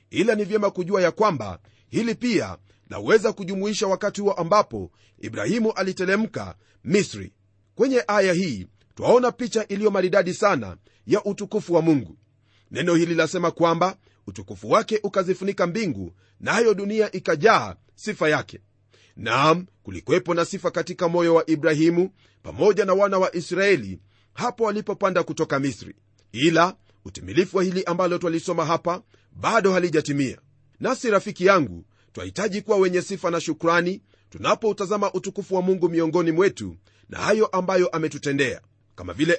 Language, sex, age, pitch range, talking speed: Swahili, male, 40-59, 140-195 Hz, 135 wpm